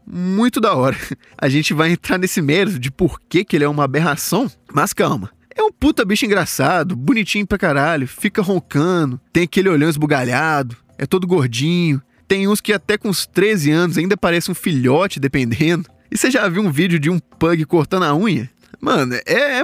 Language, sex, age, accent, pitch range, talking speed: Portuguese, male, 20-39, Brazilian, 155-215 Hz, 195 wpm